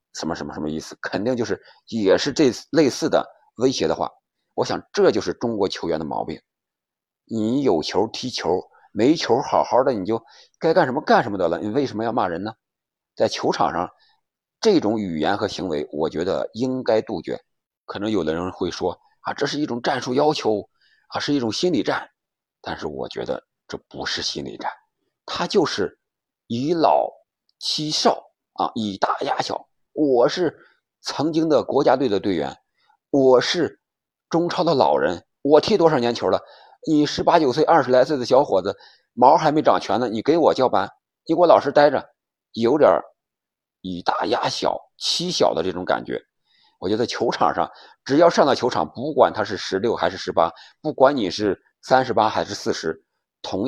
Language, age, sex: Chinese, 50-69, male